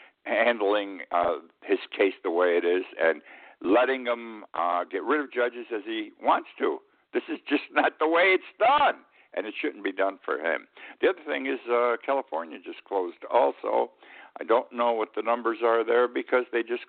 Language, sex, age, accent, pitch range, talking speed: English, male, 60-79, American, 115-160 Hz, 195 wpm